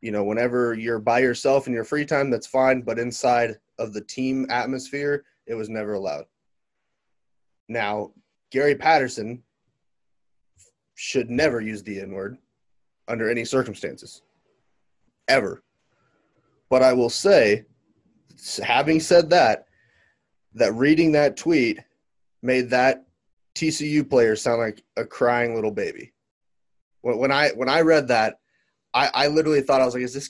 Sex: male